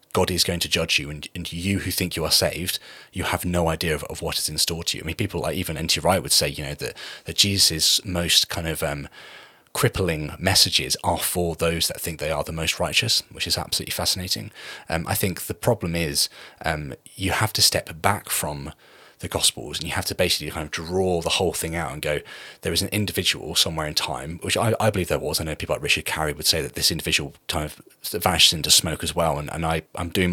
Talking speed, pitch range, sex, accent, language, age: 245 wpm, 80-95 Hz, male, British, English, 30-49